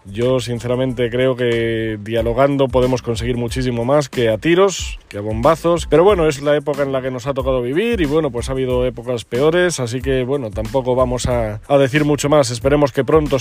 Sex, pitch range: male, 130-160 Hz